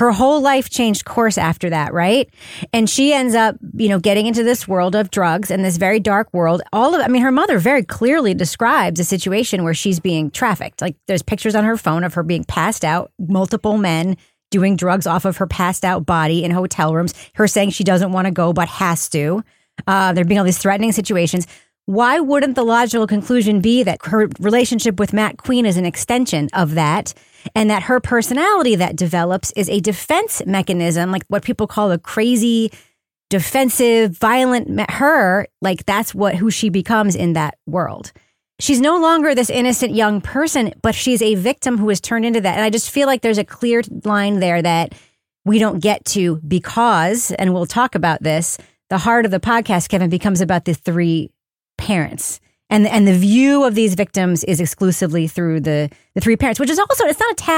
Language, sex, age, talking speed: English, female, 30-49, 200 wpm